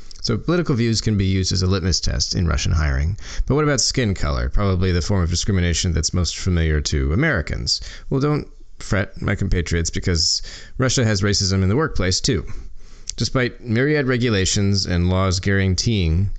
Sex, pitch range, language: male, 80-100 Hz, English